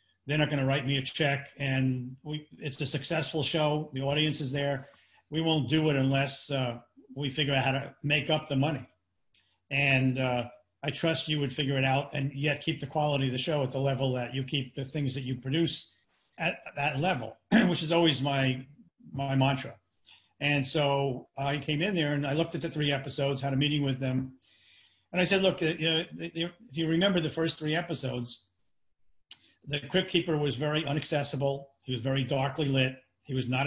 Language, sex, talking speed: English, male, 205 wpm